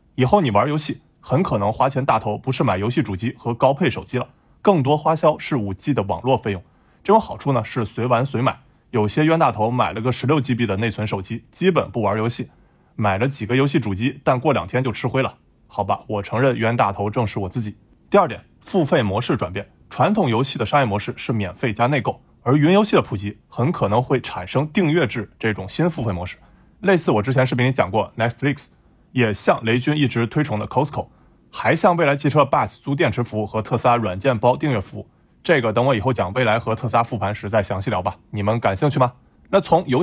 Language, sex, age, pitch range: Chinese, male, 20-39, 110-140 Hz